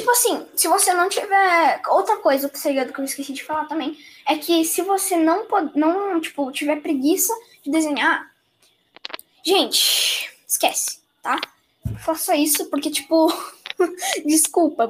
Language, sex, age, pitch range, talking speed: Portuguese, female, 10-29, 290-360 Hz, 130 wpm